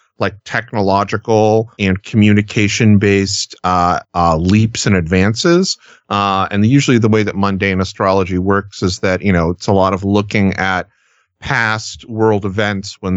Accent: American